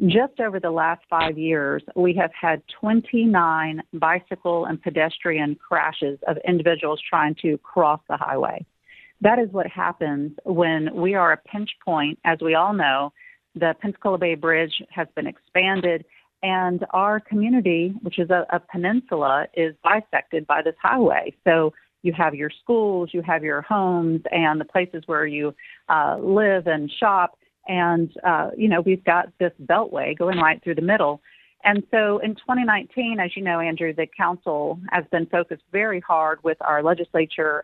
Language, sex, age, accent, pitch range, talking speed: English, female, 40-59, American, 160-190 Hz, 165 wpm